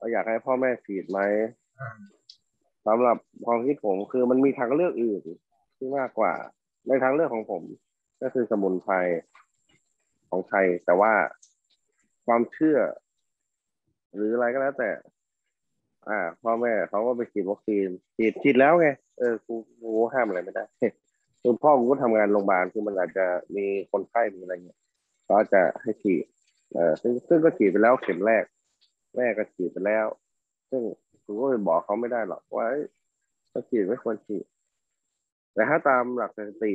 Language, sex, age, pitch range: Thai, male, 20-39, 105-135 Hz